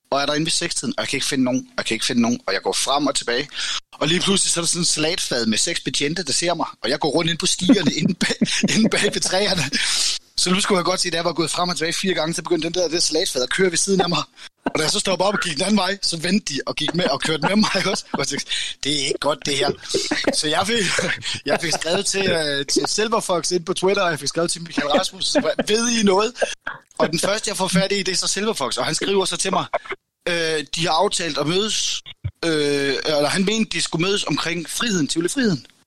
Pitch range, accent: 160-200 Hz, native